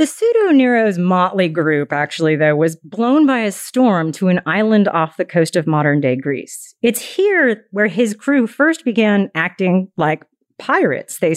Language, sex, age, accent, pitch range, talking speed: English, female, 40-59, American, 160-245 Hz, 175 wpm